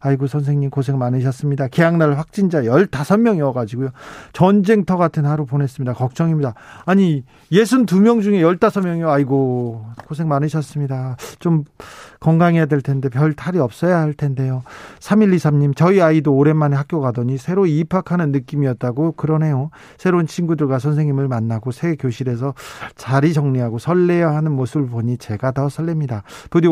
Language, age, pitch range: Korean, 40-59, 135-170 Hz